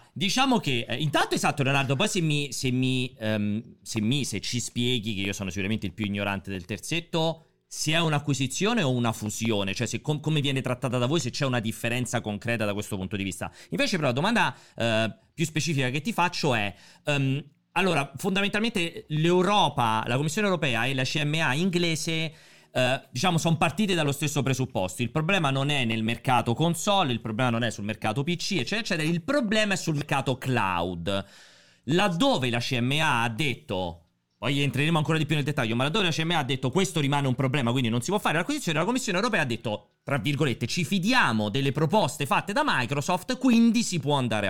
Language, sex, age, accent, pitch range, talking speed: Italian, male, 40-59, native, 115-165 Hz, 185 wpm